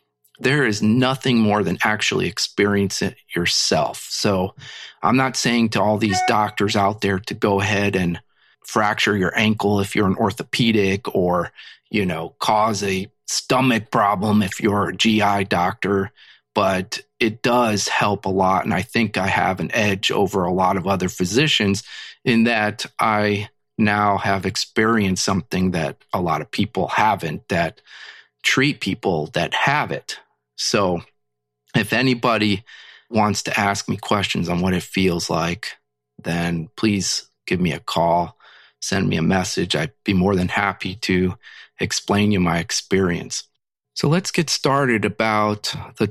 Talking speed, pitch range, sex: 155 wpm, 95-110 Hz, male